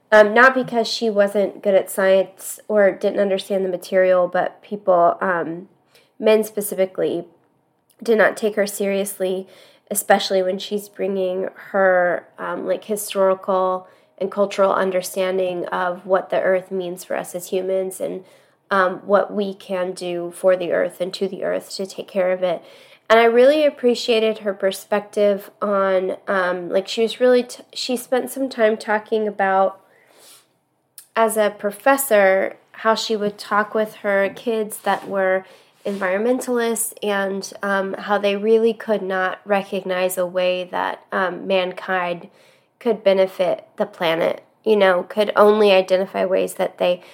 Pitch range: 185-215 Hz